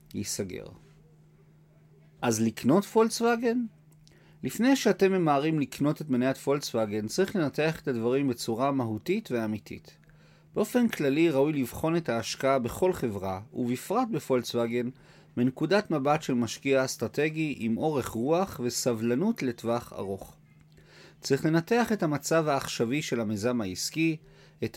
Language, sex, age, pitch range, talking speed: Hebrew, male, 40-59, 120-165 Hz, 115 wpm